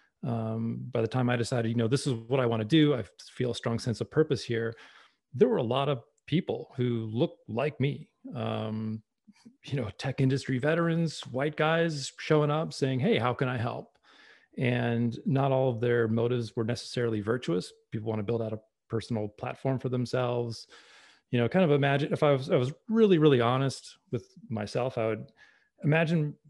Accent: American